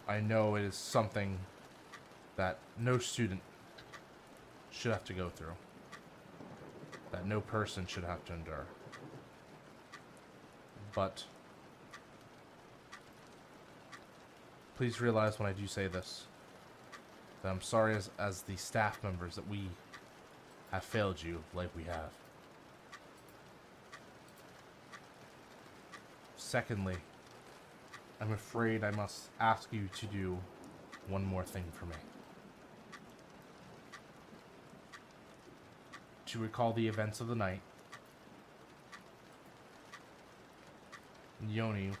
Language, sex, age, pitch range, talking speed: English, male, 20-39, 95-110 Hz, 95 wpm